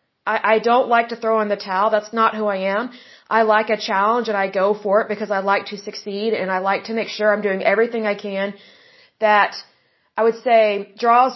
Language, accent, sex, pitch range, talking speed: English, American, female, 205-235 Hz, 225 wpm